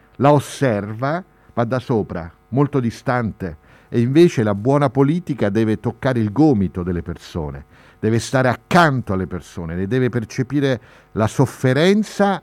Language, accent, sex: Italian, native, male